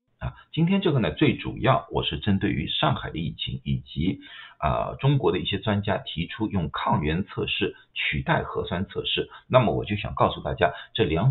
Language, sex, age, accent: Chinese, male, 50-69, native